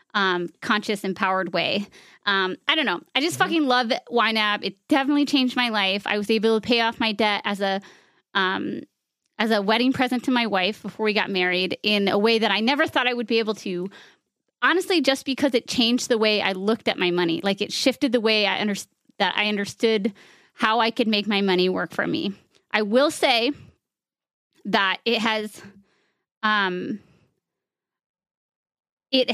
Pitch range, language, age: 200-250 Hz, English, 20-39